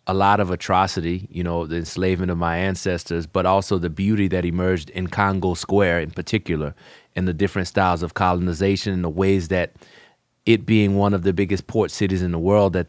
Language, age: English, 30-49